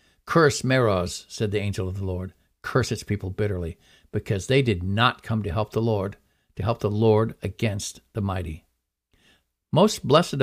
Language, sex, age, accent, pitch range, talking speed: English, male, 50-69, American, 85-130 Hz, 175 wpm